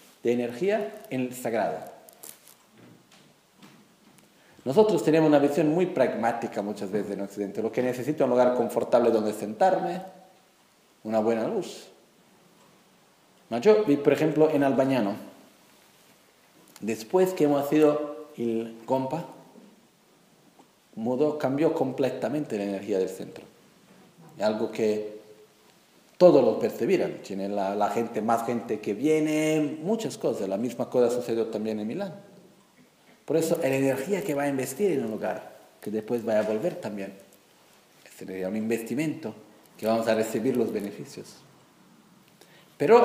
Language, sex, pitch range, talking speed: Italian, male, 110-175 Hz, 135 wpm